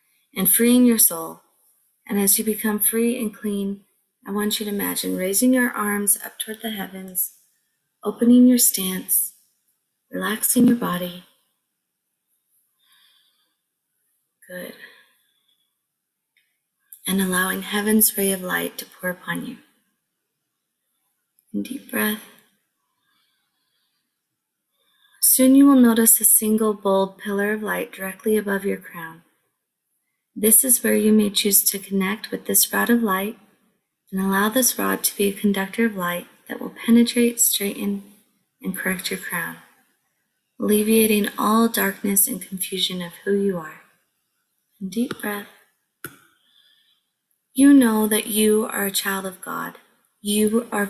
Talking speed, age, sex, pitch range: 130 wpm, 20-39, female, 195-225 Hz